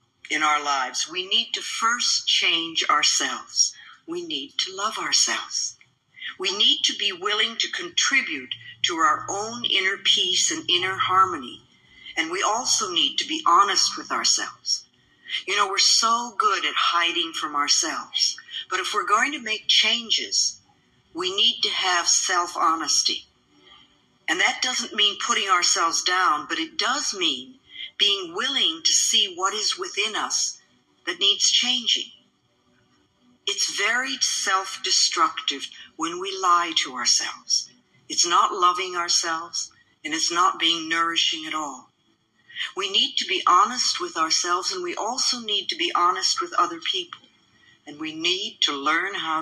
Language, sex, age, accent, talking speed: English, female, 50-69, American, 150 wpm